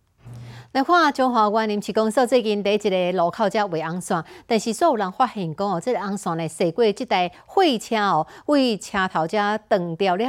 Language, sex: Chinese, female